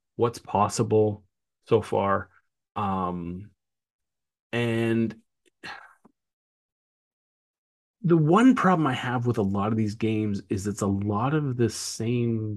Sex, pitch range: male, 95-120 Hz